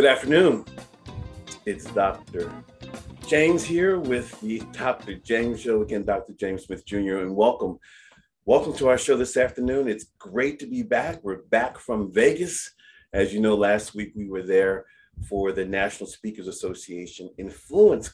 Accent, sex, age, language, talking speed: American, male, 40-59, English, 155 wpm